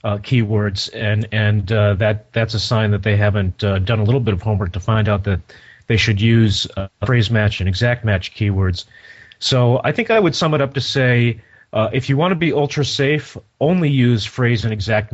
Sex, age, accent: male, 30-49, American